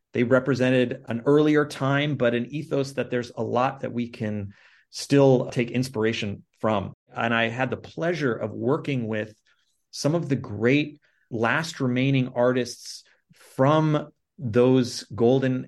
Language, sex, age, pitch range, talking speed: English, male, 30-49, 110-130 Hz, 140 wpm